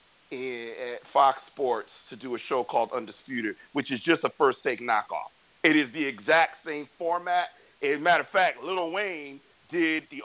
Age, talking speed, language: 40-59, 180 wpm, English